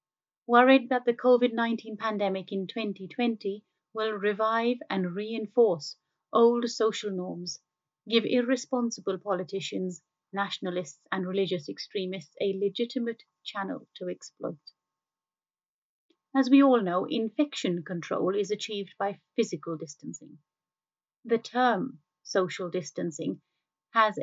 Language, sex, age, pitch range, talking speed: English, female, 30-49, 185-235 Hz, 105 wpm